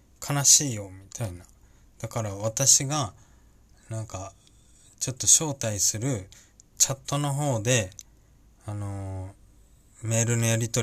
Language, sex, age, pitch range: Japanese, male, 20-39, 100-135 Hz